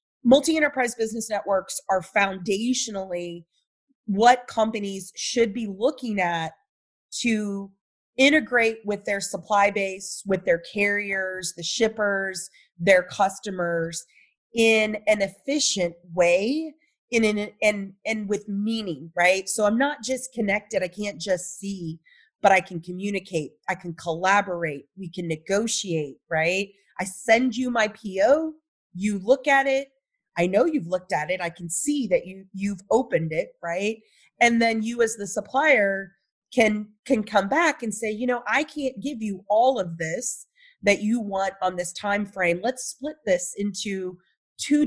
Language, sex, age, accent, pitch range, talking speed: English, female, 30-49, American, 185-235 Hz, 150 wpm